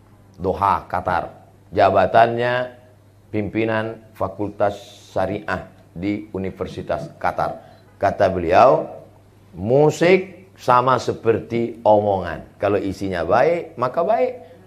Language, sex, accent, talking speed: Indonesian, male, native, 80 wpm